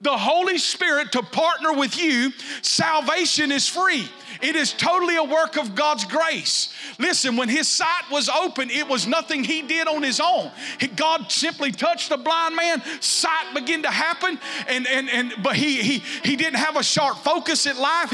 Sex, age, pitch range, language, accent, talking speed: male, 40-59, 255-315 Hz, English, American, 190 wpm